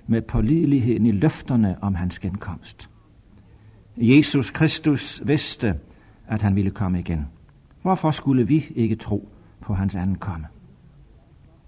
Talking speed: 125 wpm